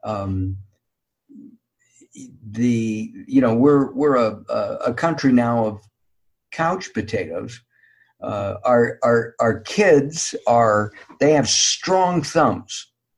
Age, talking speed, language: 50-69, 105 wpm, English